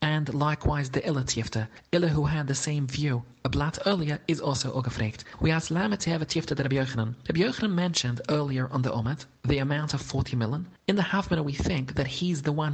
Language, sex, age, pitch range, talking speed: English, male, 30-49, 130-155 Hz, 220 wpm